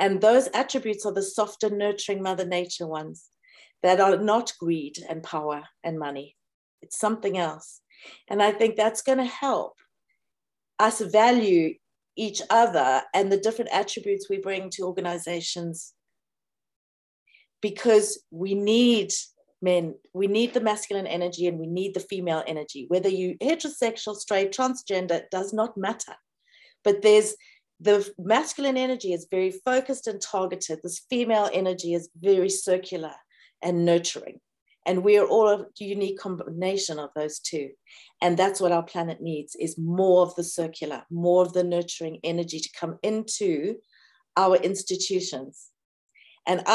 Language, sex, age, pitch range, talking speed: English, female, 40-59, 170-215 Hz, 145 wpm